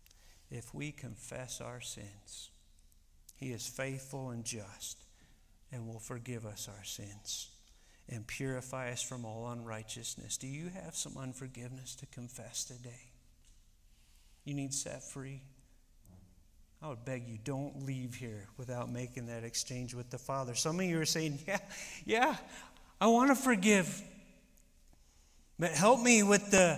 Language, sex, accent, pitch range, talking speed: English, male, American, 115-160 Hz, 140 wpm